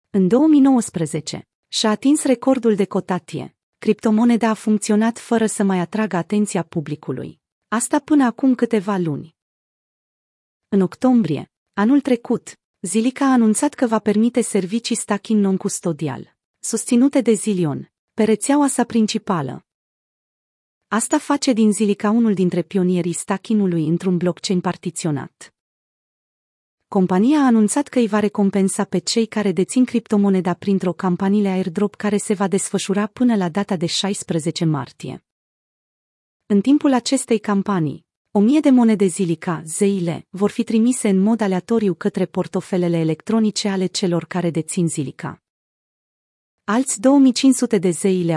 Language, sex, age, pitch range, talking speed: Romanian, female, 30-49, 180-230 Hz, 130 wpm